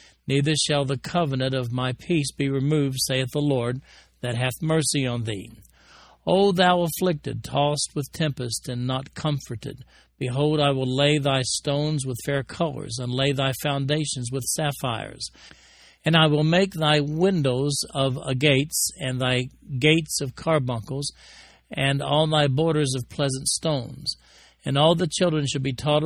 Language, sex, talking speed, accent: English, male, 155 wpm, American